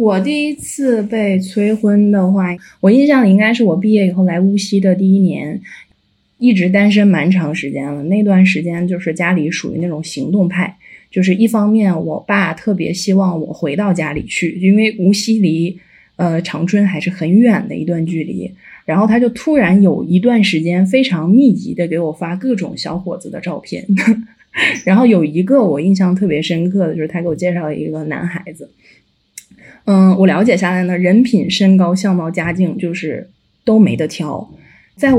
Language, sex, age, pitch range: Chinese, female, 20-39, 175-210 Hz